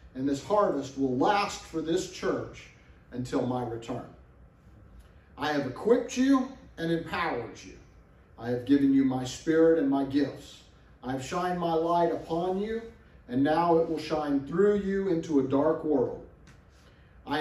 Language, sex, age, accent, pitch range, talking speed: English, male, 40-59, American, 125-190 Hz, 160 wpm